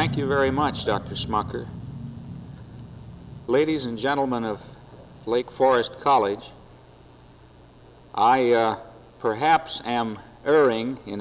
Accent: American